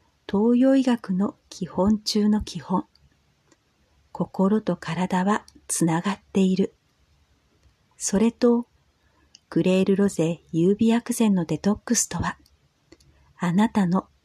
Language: Japanese